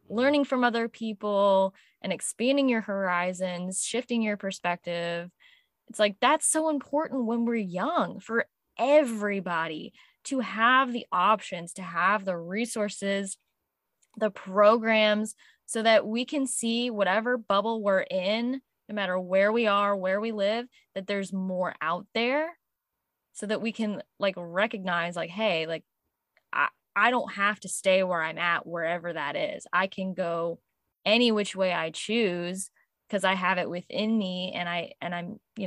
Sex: female